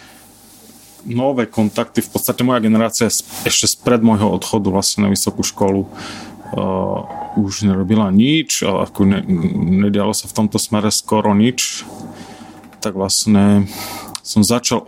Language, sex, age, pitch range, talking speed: Slovak, male, 30-49, 105-120 Hz, 130 wpm